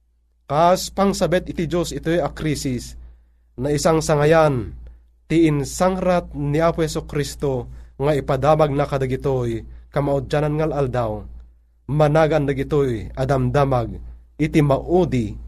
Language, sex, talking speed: Filipino, male, 105 wpm